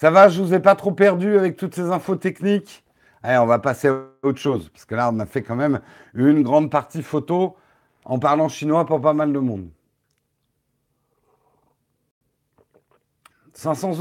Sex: male